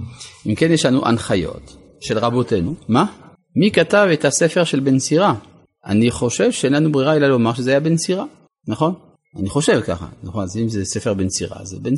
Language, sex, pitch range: Hebrew, male, 115-170 Hz